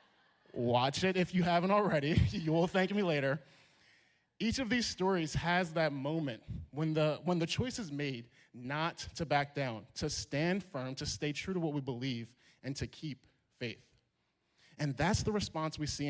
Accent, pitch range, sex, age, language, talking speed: American, 130-170 Hz, male, 30-49, English, 180 wpm